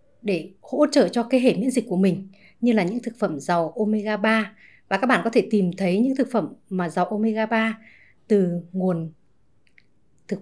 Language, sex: Vietnamese, female